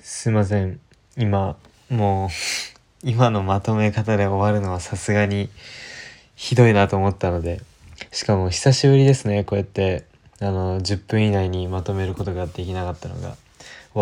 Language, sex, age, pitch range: Japanese, male, 20-39, 95-120 Hz